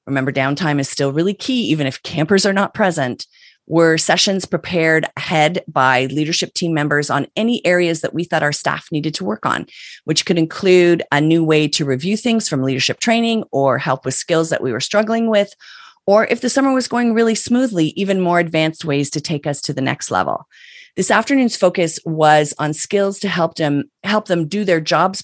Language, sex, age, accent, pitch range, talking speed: English, female, 30-49, American, 145-200 Hz, 205 wpm